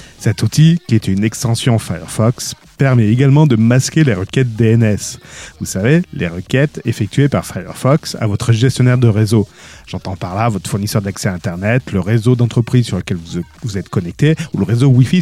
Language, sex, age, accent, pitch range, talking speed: French, male, 40-59, French, 105-140 Hz, 185 wpm